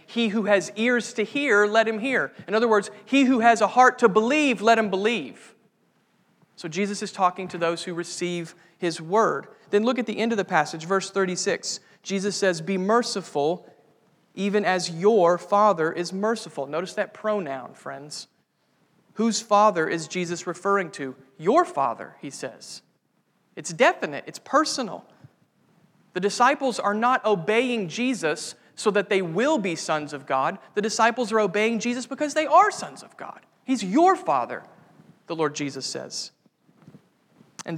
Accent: American